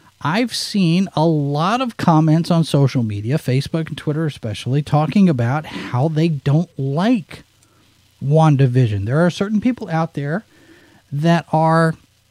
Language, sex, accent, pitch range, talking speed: English, male, American, 135-200 Hz, 135 wpm